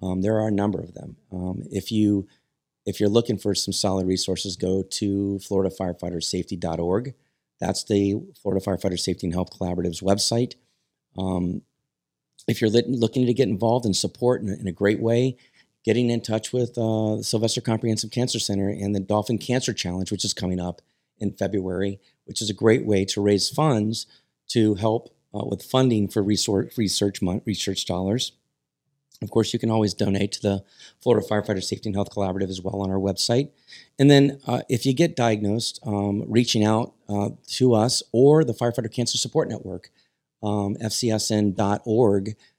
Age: 30-49